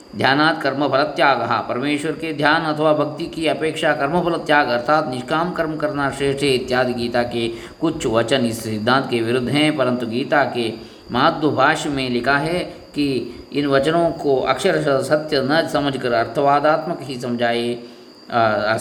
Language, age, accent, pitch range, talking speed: Kannada, 20-39, native, 120-150 Hz, 145 wpm